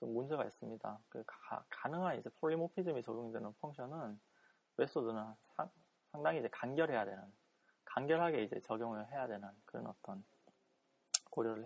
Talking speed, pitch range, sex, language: 115 wpm, 115-175 Hz, male, English